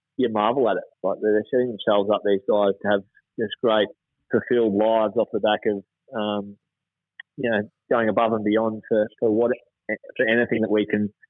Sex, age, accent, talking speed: male, 20-39, Australian, 190 wpm